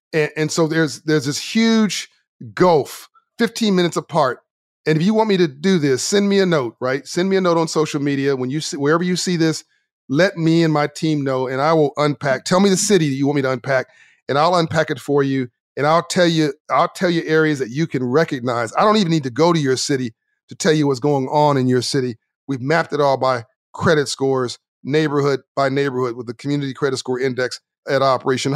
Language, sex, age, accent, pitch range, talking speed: English, male, 40-59, American, 135-165 Hz, 235 wpm